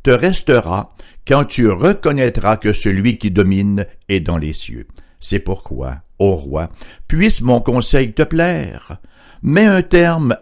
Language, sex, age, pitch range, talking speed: French, male, 60-79, 95-150 Hz, 145 wpm